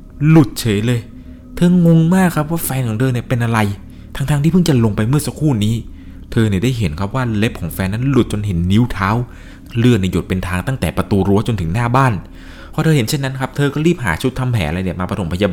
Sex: male